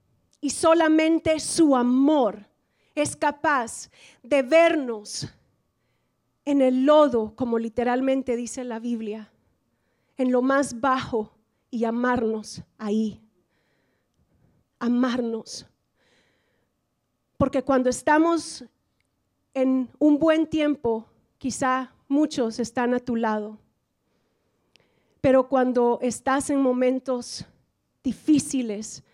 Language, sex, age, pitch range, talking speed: English, female, 40-59, 235-280 Hz, 90 wpm